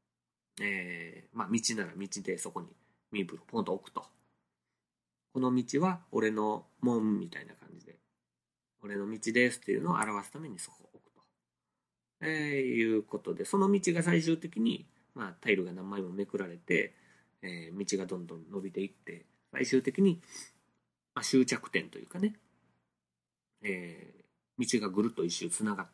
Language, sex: Japanese, male